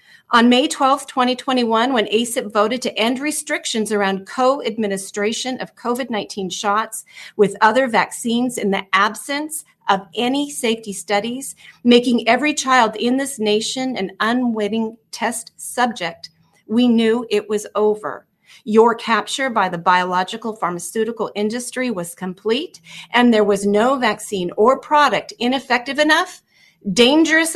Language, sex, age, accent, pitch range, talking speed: English, female, 40-59, American, 205-255 Hz, 130 wpm